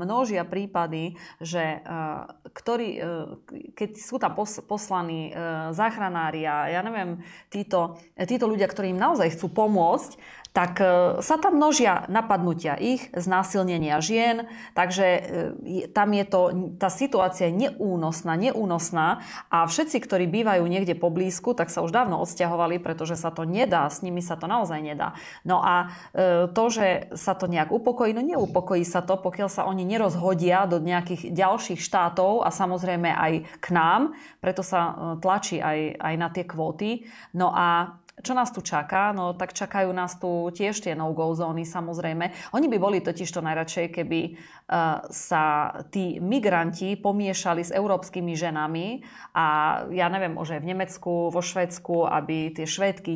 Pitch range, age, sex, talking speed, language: 170-195 Hz, 30-49, female, 150 wpm, Slovak